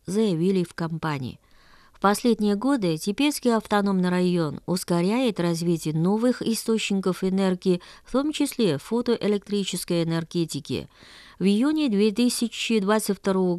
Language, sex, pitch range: Russian, female, 165-220 Hz